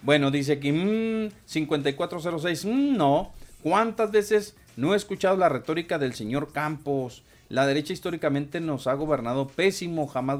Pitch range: 130-170 Hz